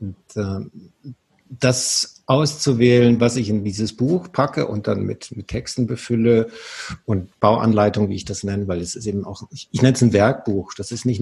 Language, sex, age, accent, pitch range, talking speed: German, male, 50-69, German, 105-125 Hz, 195 wpm